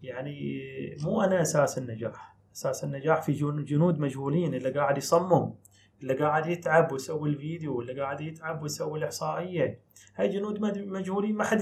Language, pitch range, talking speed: Arabic, 135-170 Hz, 145 wpm